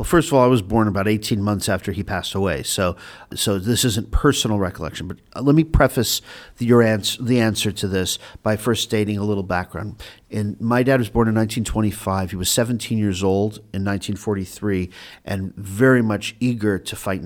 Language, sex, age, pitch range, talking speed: English, male, 50-69, 95-115 Hz, 200 wpm